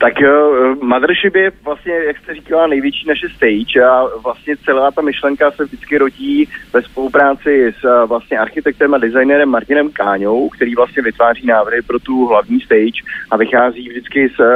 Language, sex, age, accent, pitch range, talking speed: Czech, male, 30-49, native, 115-135 Hz, 170 wpm